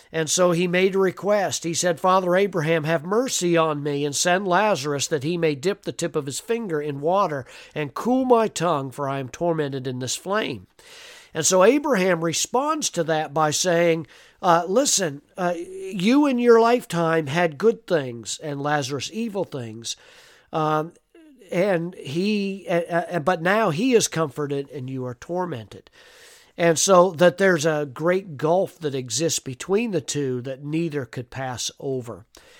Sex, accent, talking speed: male, American, 170 wpm